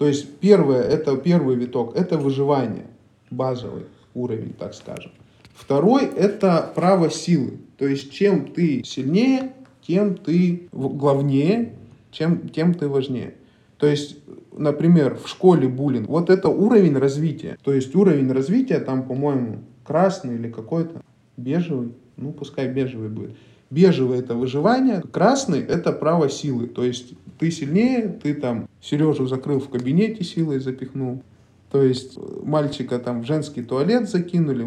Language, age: Russian, 20-39